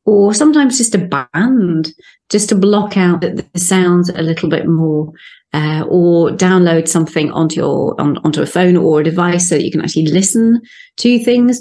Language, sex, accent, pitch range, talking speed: English, female, British, 170-210 Hz, 185 wpm